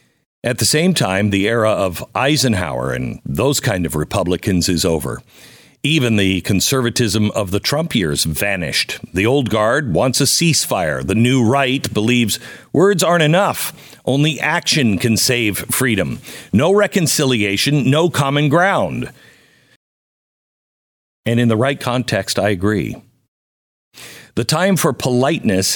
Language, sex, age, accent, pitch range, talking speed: English, male, 50-69, American, 95-135 Hz, 135 wpm